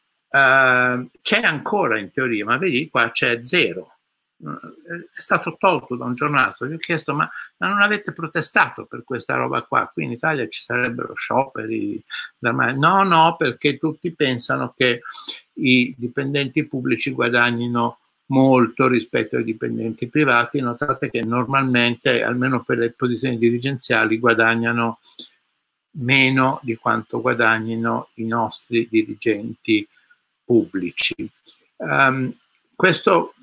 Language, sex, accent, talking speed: Italian, male, native, 125 wpm